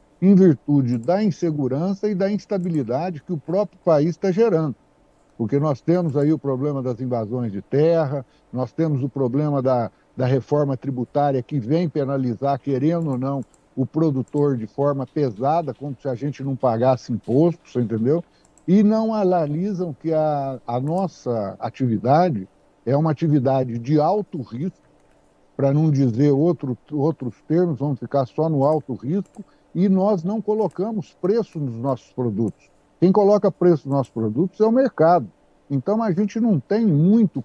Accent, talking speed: Brazilian, 160 wpm